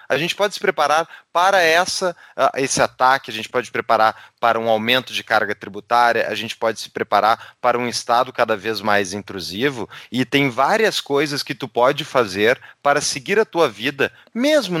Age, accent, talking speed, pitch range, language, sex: 30-49, Brazilian, 190 wpm, 125-195 Hz, Portuguese, male